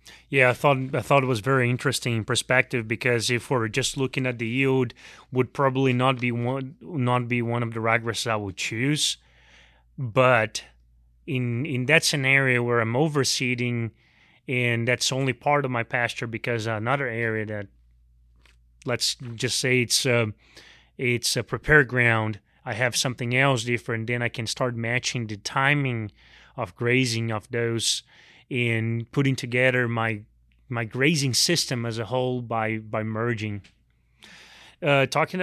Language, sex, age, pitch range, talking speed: English, male, 30-49, 115-130 Hz, 155 wpm